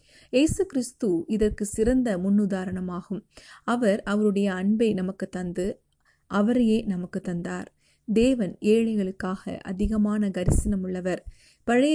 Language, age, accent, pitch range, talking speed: Tamil, 30-49, native, 190-220 Hz, 95 wpm